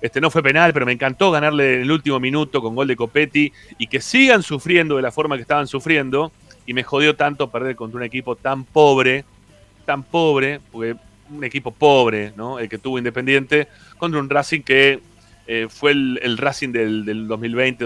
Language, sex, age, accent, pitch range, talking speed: Spanish, male, 30-49, Argentinian, 105-135 Hz, 200 wpm